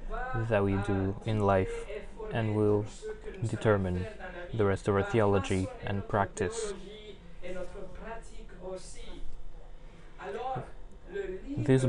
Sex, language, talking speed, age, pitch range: male, French, 80 wpm, 20-39, 105-180 Hz